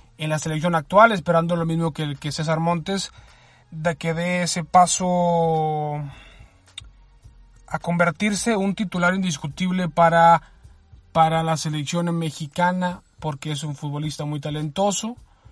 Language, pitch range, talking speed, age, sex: Spanish, 155-180 Hz, 130 wpm, 20-39, male